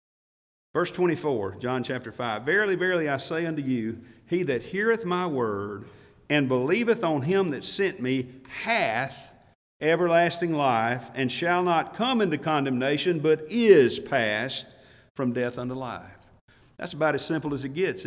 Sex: male